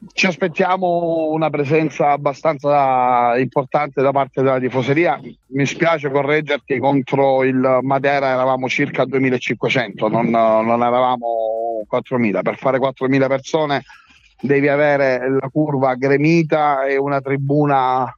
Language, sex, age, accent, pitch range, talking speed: Italian, male, 30-49, native, 130-150 Hz, 115 wpm